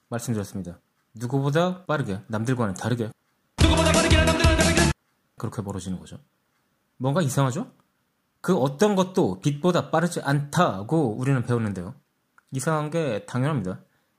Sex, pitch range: male, 125-175 Hz